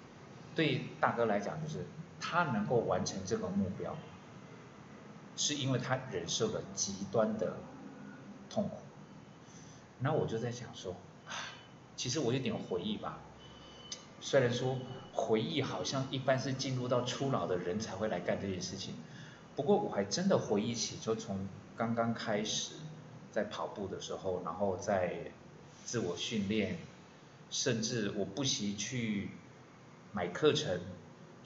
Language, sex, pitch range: Chinese, male, 110-140 Hz